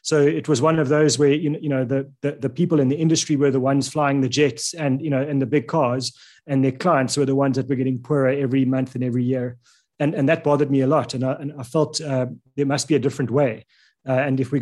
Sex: male